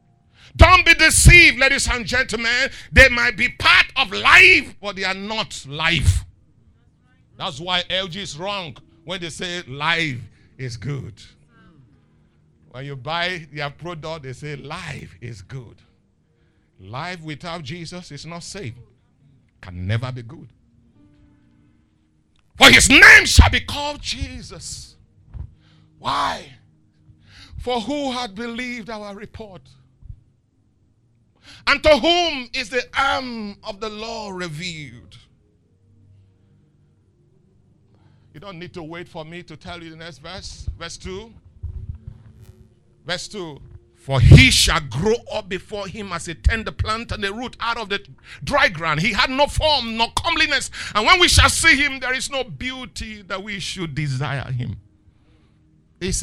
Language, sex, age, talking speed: English, male, 50-69, 140 wpm